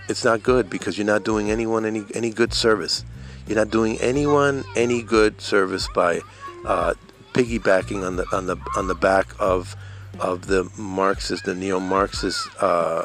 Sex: male